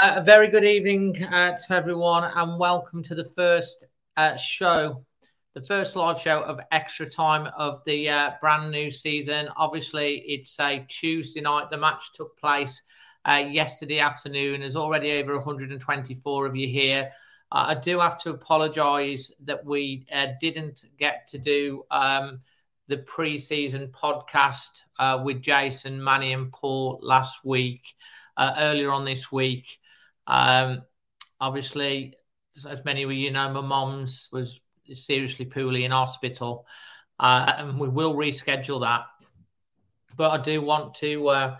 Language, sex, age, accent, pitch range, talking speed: English, male, 40-59, British, 130-150 Hz, 150 wpm